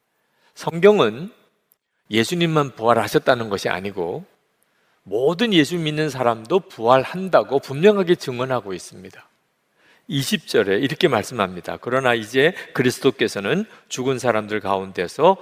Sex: male